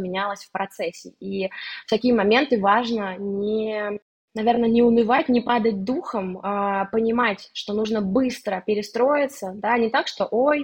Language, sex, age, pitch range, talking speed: Russian, female, 20-39, 195-240 Hz, 140 wpm